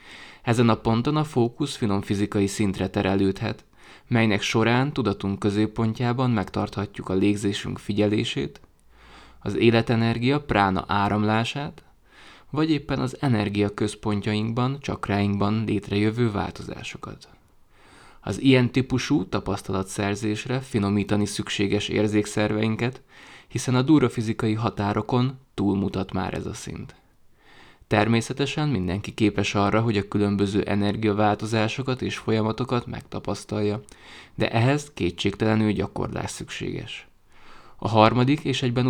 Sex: male